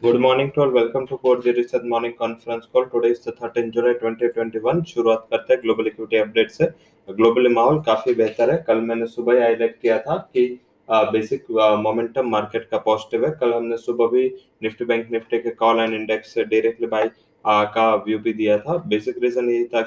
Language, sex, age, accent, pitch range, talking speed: English, male, 20-39, Indian, 115-125 Hz, 165 wpm